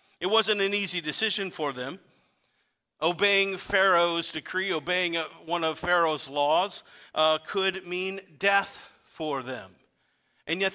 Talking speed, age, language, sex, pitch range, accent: 130 wpm, 50-69, English, male, 160-200 Hz, American